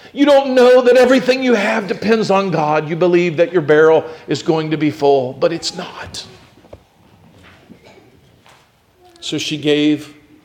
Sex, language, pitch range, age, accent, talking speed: male, English, 130-180 Hz, 50-69, American, 150 wpm